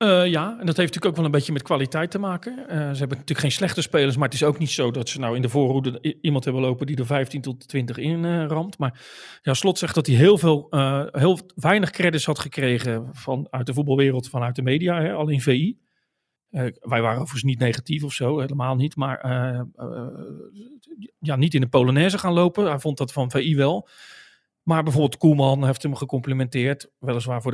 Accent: Dutch